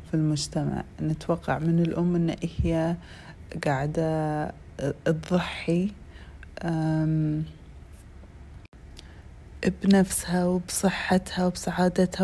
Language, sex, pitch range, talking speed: Arabic, female, 150-185 Hz, 60 wpm